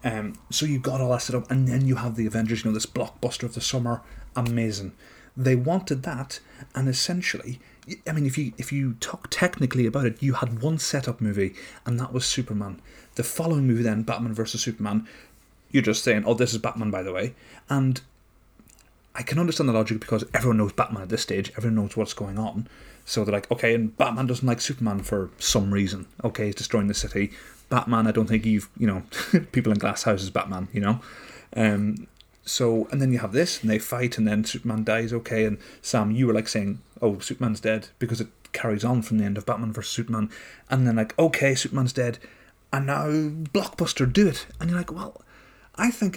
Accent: British